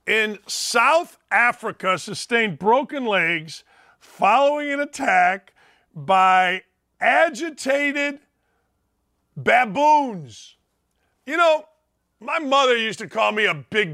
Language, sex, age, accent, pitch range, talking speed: English, male, 50-69, American, 195-285 Hz, 95 wpm